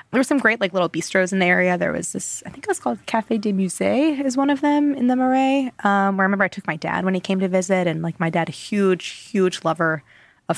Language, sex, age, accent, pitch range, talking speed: English, female, 20-39, American, 170-200 Hz, 285 wpm